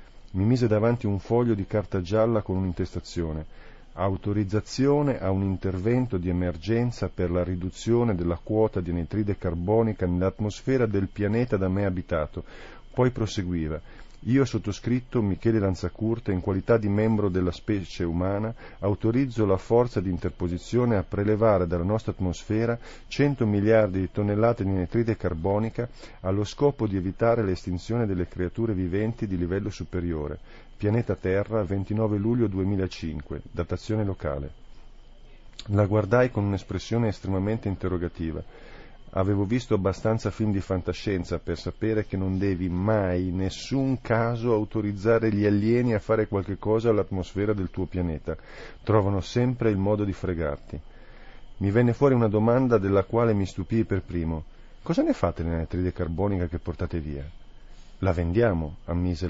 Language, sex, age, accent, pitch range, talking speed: Italian, male, 40-59, native, 90-110 Hz, 140 wpm